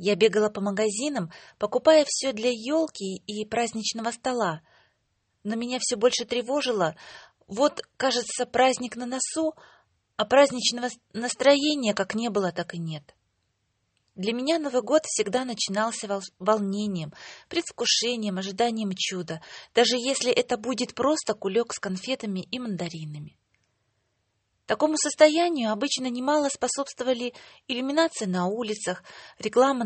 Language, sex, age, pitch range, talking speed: English, female, 20-39, 195-255 Hz, 120 wpm